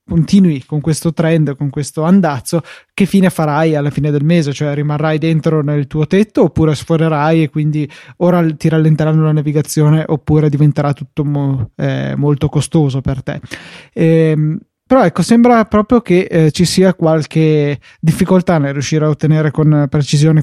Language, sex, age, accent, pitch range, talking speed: Italian, male, 20-39, native, 150-175 Hz, 160 wpm